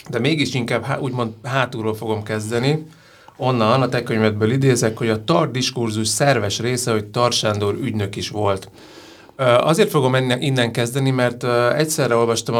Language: Hungarian